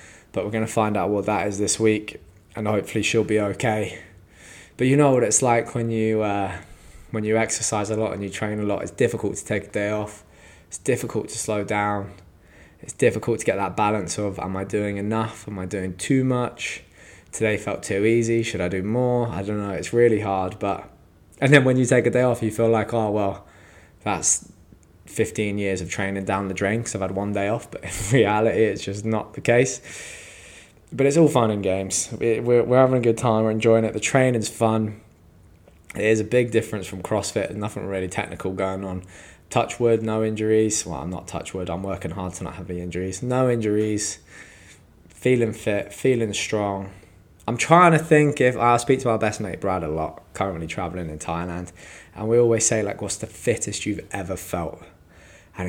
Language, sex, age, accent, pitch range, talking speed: English, male, 20-39, British, 95-115 Hz, 210 wpm